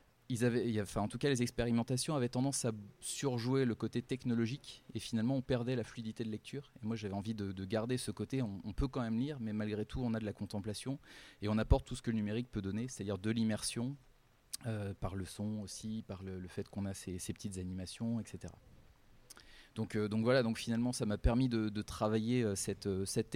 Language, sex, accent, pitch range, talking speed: French, male, French, 100-120 Hz, 230 wpm